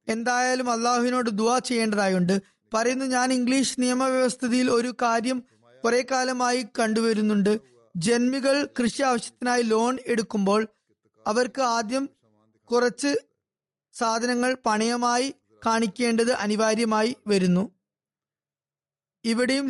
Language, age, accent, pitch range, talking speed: Malayalam, 20-39, native, 210-255 Hz, 80 wpm